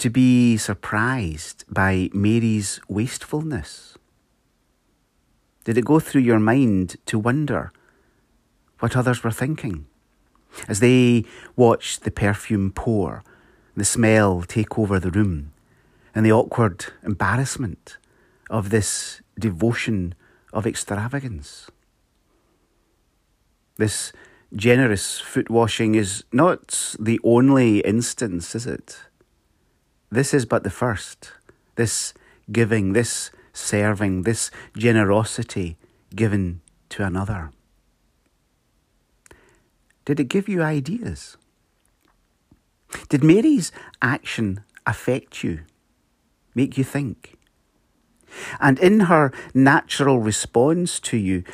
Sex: male